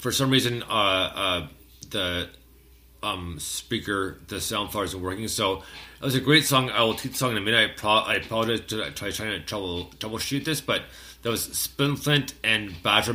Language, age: English, 30-49